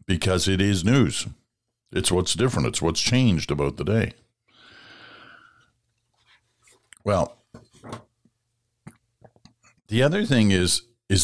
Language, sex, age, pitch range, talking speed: English, male, 60-79, 85-120 Hz, 100 wpm